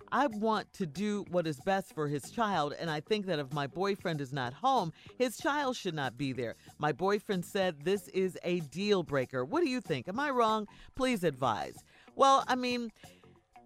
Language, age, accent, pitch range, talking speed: English, 40-59, American, 155-230 Hz, 200 wpm